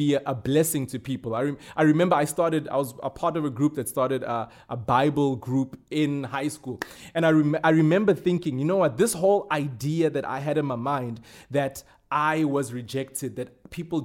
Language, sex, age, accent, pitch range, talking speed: English, male, 20-39, South African, 130-165 Hz, 220 wpm